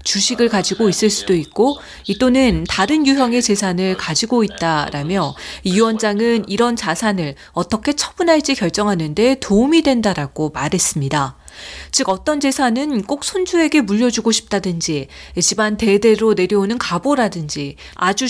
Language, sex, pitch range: Korean, female, 180-270 Hz